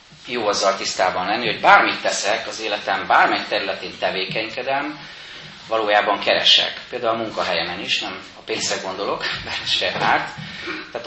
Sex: male